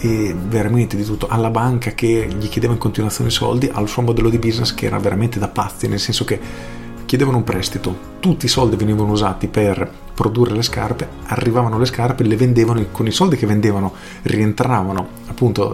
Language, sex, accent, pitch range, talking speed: Italian, male, native, 100-120 Hz, 190 wpm